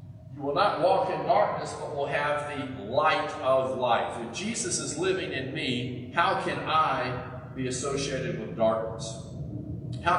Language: English